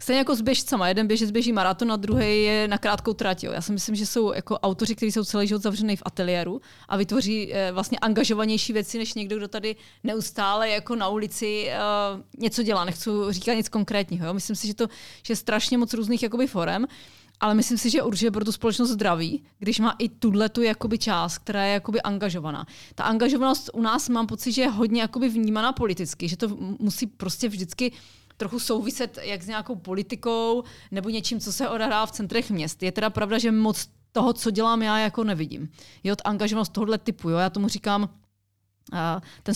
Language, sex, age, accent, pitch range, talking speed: Czech, female, 30-49, native, 195-230 Hz, 205 wpm